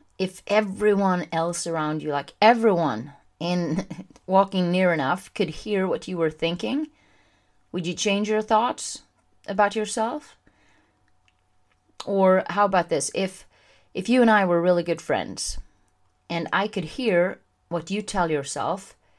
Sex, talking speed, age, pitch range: female, 140 wpm, 30-49, 155-195 Hz